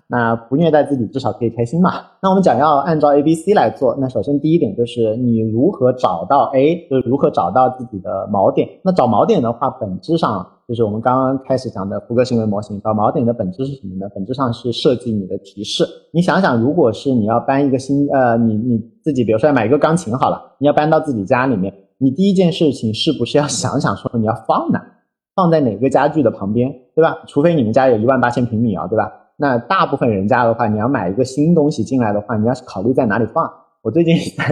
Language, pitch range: Chinese, 115-150 Hz